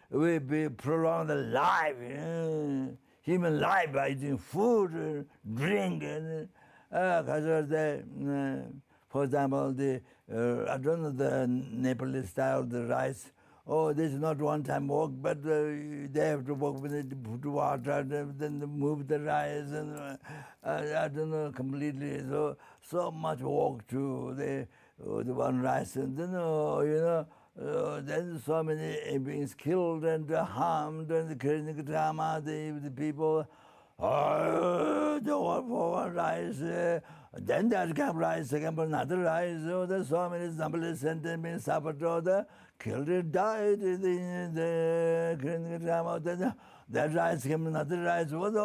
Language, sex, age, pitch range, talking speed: English, male, 60-79, 145-170 Hz, 160 wpm